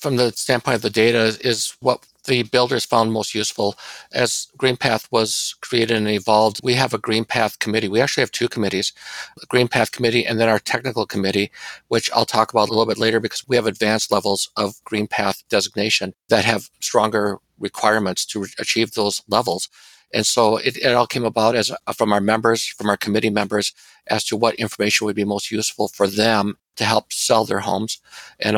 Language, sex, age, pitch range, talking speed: English, male, 50-69, 105-115 Hz, 200 wpm